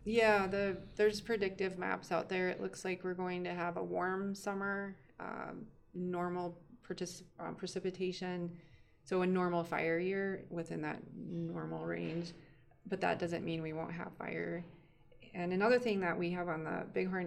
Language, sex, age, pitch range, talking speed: English, female, 20-39, 165-185 Hz, 165 wpm